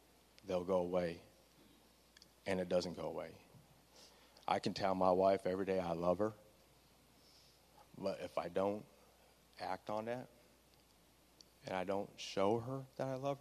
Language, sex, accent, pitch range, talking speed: English, male, American, 90-110 Hz, 150 wpm